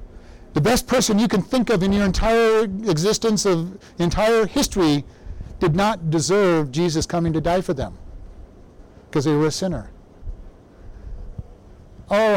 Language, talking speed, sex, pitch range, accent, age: English, 140 wpm, male, 130-195 Hz, American, 60-79